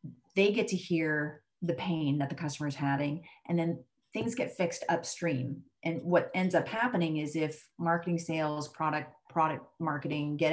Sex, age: female, 30-49